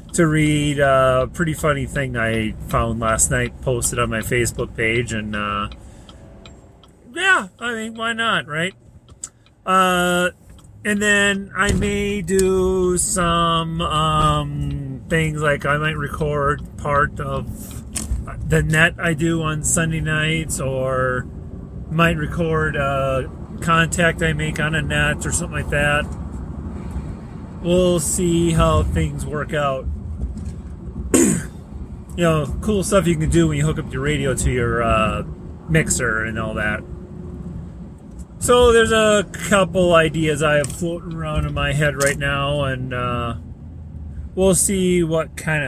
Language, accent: English, American